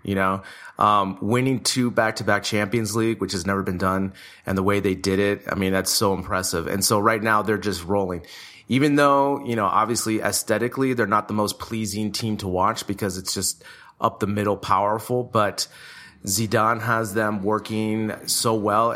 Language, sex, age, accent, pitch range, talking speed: English, male, 30-49, American, 95-115 Hz, 180 wpm